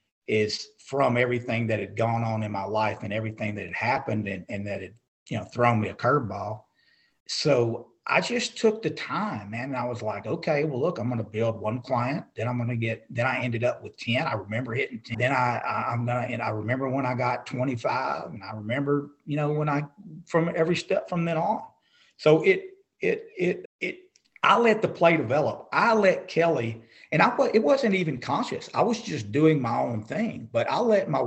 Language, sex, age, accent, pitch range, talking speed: English, male, 40-59, American, 110-160 Hz, 215 wpm